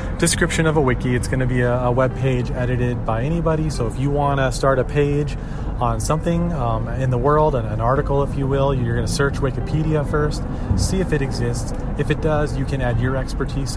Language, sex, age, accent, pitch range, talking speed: English, male, 30-49, American, 120-140 Hz, 225 wpm